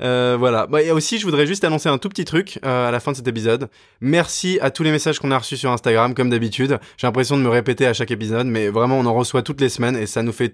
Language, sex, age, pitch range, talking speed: French, male, 20-39, 115-135 Hz, 290 wpm